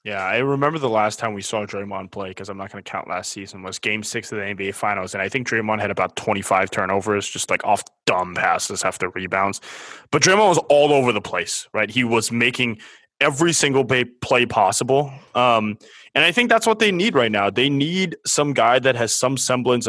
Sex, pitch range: male, 110-140 Hz